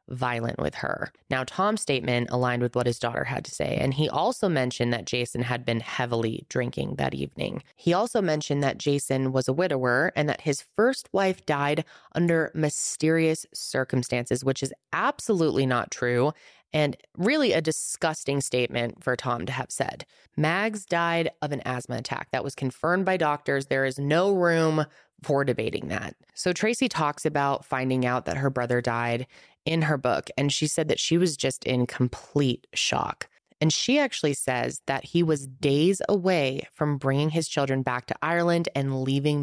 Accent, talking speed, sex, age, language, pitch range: American, 180 wpm, female, 20-39, English, 125-160 Hz